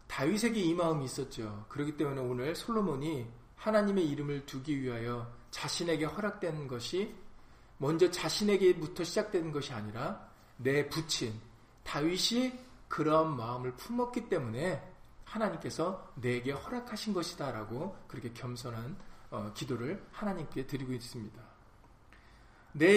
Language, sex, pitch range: Korean, male, 120-185 Hz